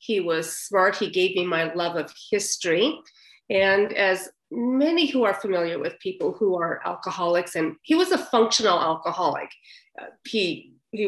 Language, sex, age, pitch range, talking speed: English, female, 40-59, 180-235 Hz, 155 wpm